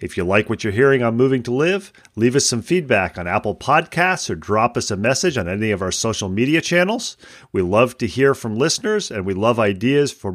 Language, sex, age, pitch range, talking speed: English, male, 40-59, 100-130 Hz, 230 wpm